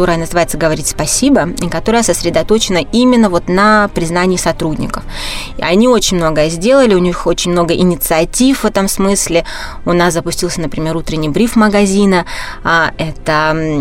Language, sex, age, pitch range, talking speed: Russian, female, 20-39, 165-210 Hz, 145 wpm